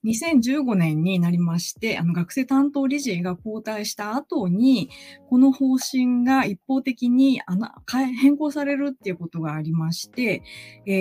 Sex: female